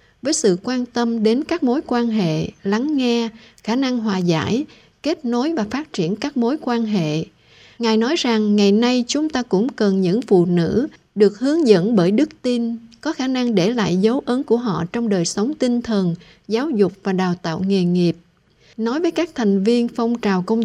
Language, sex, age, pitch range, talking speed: Vietnamese, female, 60-79, 195-250 Hz, 205 wpm